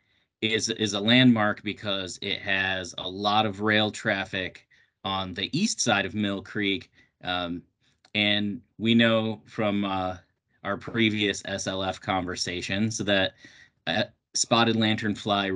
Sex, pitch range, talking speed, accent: male, 95-110 Hz, 130 wpm, American